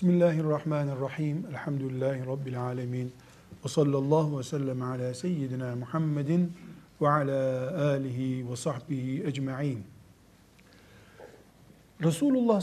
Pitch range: 135-180 Hz